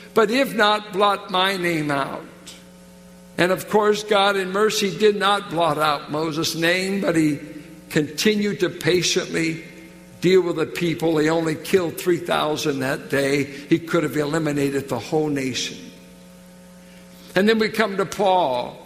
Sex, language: male, English